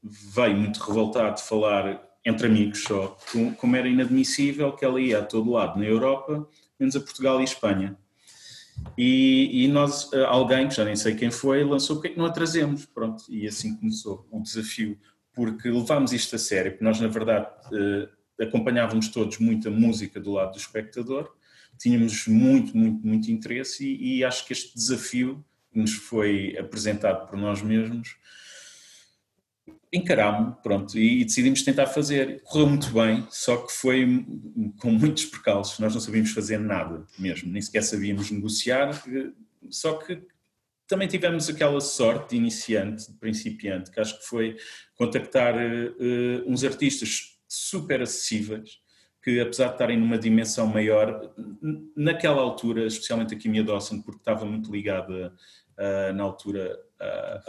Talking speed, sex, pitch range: 155 wpm, male, 110-145 Hz